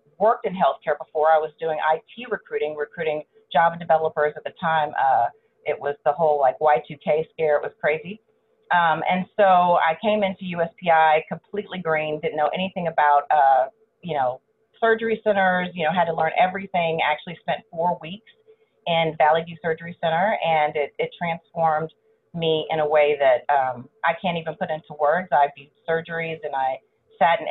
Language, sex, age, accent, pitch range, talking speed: English, female, 30-49, American, 155-190 Hz, 175 wpm